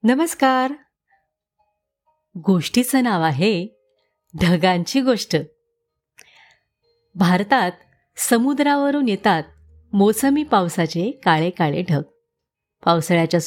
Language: Marathi